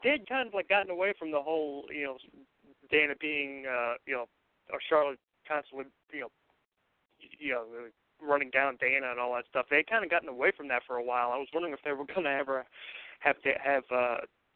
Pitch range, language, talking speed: 130-160 Hz, English, 225 wpm